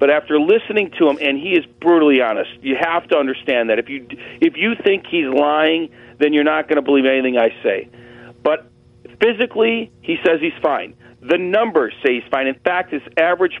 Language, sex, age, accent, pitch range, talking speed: English, male, 40-59, American, 130-180 Hz, 205 wpm